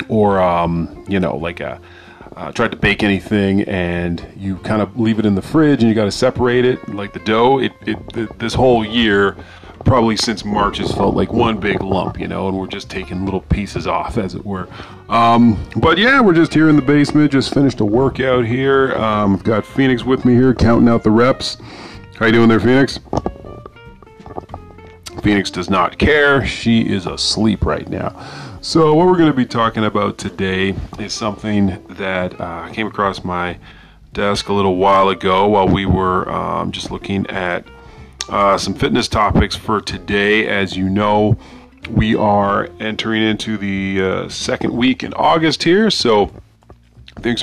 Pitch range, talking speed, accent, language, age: 95-120 Hz, 185 wpm, American, English, 30-49